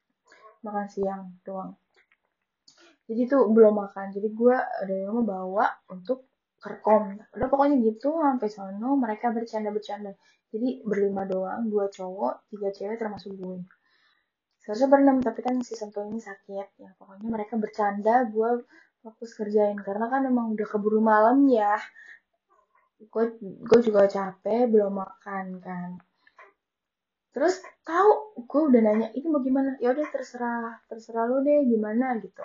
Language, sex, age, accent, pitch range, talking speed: Indonesian, female, 10-29, native, 205-255 Hz, 135 wpm